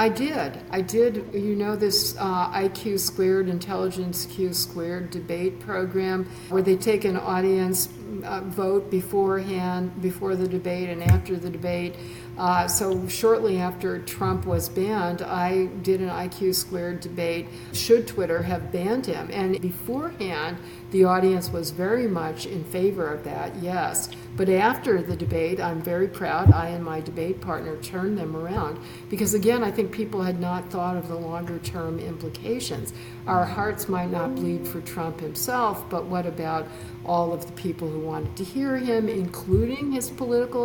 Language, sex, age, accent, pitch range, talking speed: English, female, 60-79, American, 170-195 Hz, 165 wpm